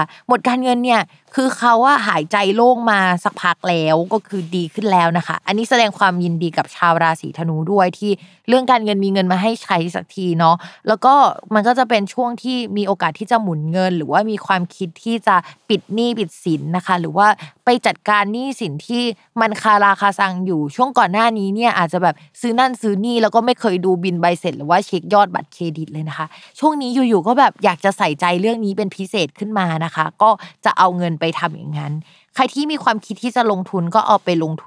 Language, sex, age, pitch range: Thai, female, 20-39, 170-220 Hz